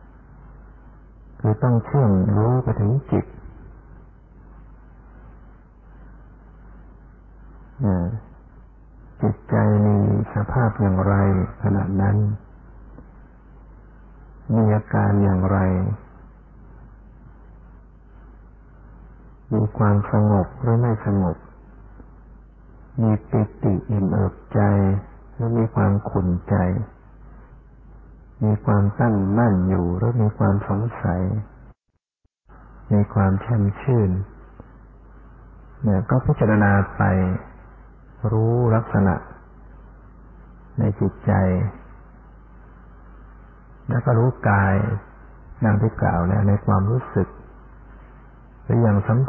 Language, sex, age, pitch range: Thai, male, 60-79, 95-115 Hz